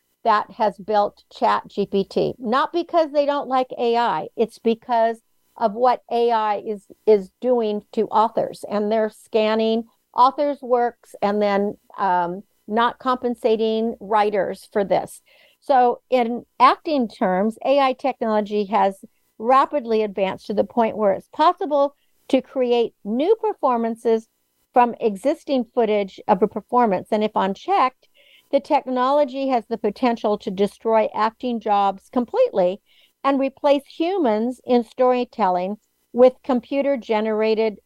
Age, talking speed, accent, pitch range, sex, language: 60-79, 125 wpm, American, 215-265 Hz, female, English